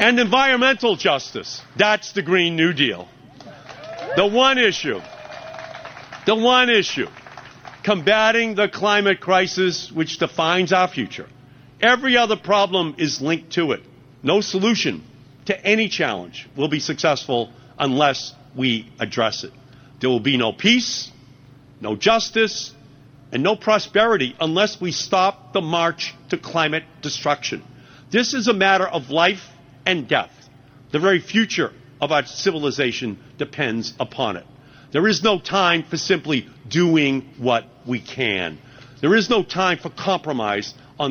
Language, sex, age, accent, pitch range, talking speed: English, male, 50-69, American, 135-200 Hz, 135 wpm